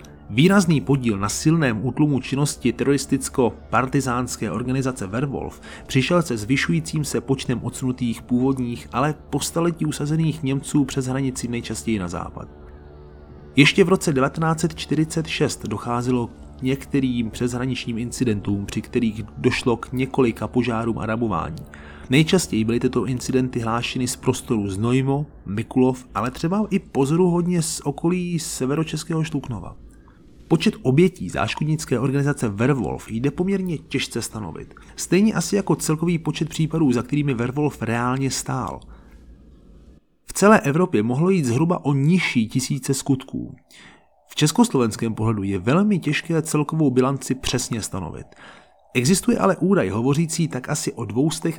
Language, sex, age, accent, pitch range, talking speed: Czech, male, 30-49, native, 115-150 Hz, 125 wpm